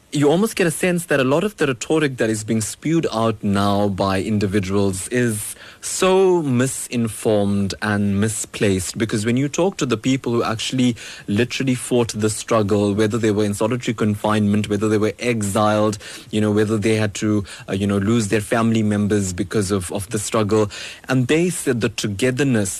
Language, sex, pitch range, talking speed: English, male, 100-120 Hz, 185 wpm